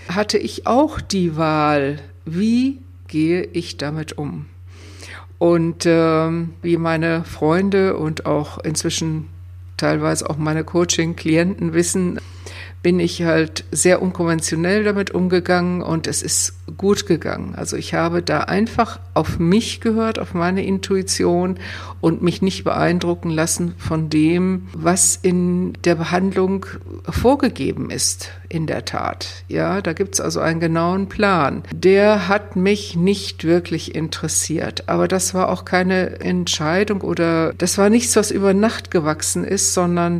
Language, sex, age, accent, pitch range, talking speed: German, female, 60-79, German, 145-195 Hz, 135 wpm